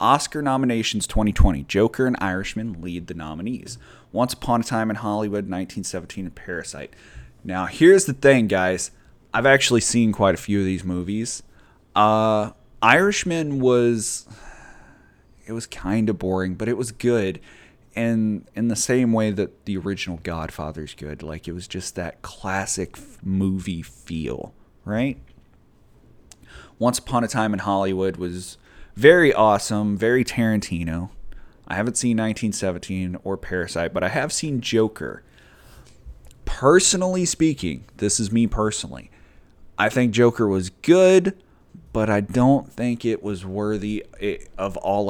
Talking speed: 140 wpm